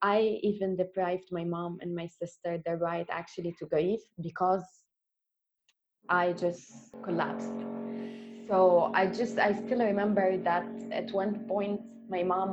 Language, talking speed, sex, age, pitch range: English, 145 wpm, female, 20-39, 175-205 Hz